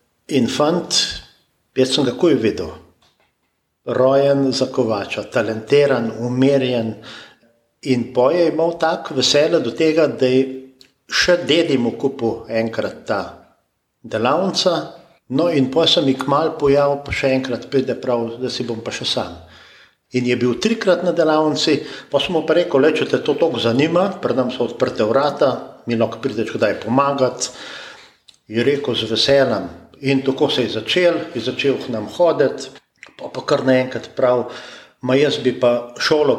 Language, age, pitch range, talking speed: German, 50-69, 120-150 Hz, 140 wpm